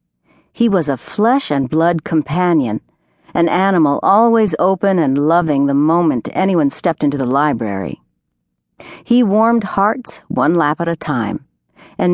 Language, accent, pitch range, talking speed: English, American, 140-190 Hz, 145 wpm